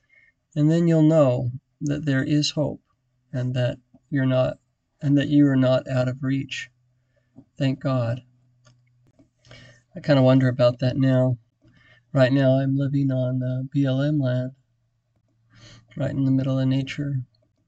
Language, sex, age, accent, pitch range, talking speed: English, male, 50-69, American, 125-140 Hz, 145 wpm